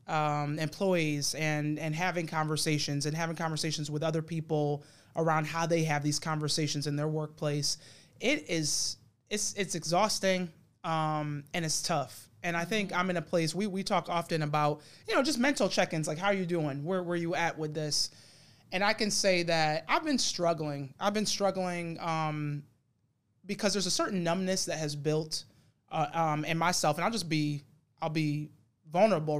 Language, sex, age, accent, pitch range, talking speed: English, male, 20-39, American, 150-185 Hz, 185 wpm